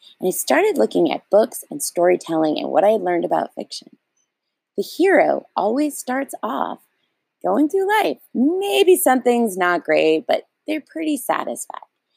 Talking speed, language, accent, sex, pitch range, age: 155 wpm, English, American, female, 180-300 Hz, 30-49